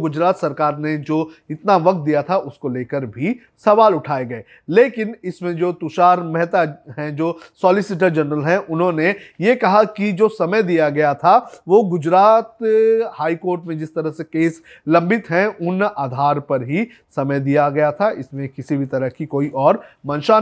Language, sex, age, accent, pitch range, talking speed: Hindi, male, 30-49, native, 155-200 Hz, 180 wpm